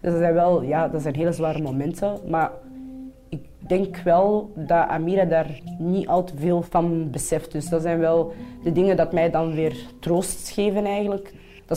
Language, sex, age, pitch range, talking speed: Dutch, female, 20-39, 155-190 Hz, 185 wpm